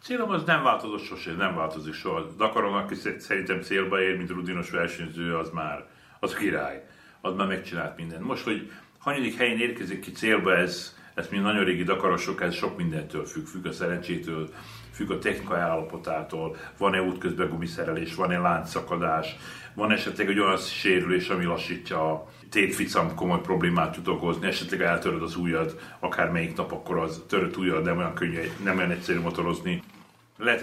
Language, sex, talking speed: Hungarian, male, 170 wpm